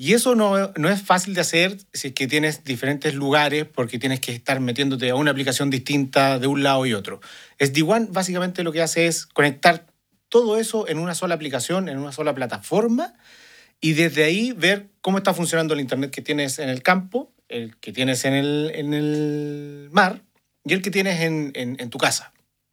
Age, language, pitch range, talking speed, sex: 40-59, Spanish, 135-185 Hz, 200 wpm, male